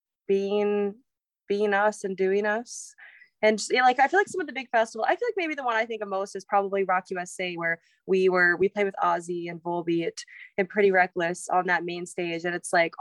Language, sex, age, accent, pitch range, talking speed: English, female, 20-39, American, 190-250 Hz, 225 wpm